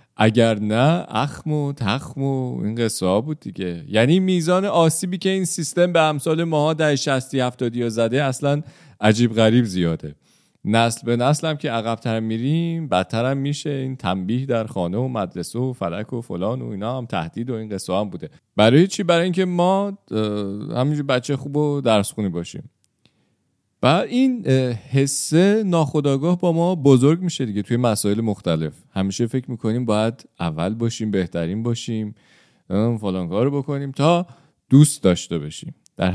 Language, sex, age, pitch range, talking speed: Persian, male, 40-59, 105-145 Hz, 150 wpm